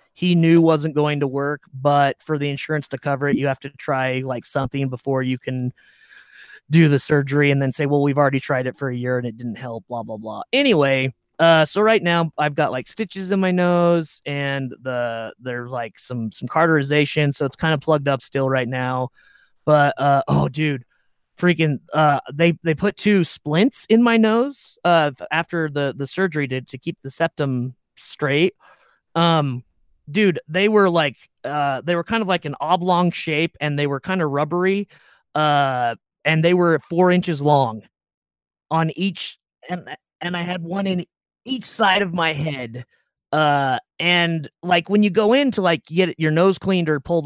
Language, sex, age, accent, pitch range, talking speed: English, male, 30-49, American, 135-175 Hz, 190 wpm